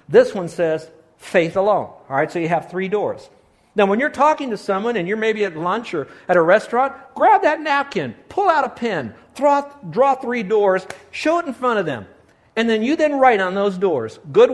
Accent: American